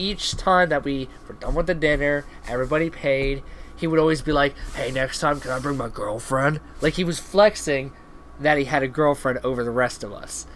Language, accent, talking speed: English, American, 215 wpm